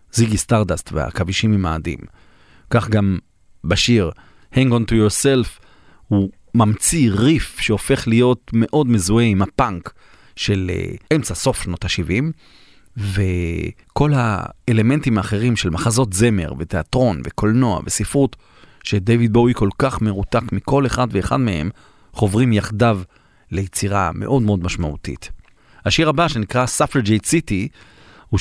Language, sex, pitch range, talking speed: Hebrew, male, 100-125 Hz, 115 wpm